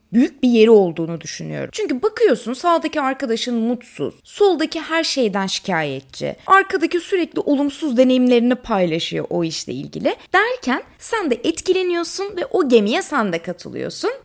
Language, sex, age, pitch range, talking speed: Turkish, female, 20-39, 220-325 Hz, 135 wpm